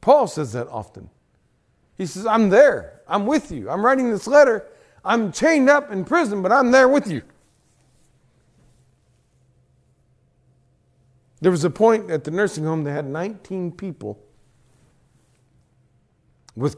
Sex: male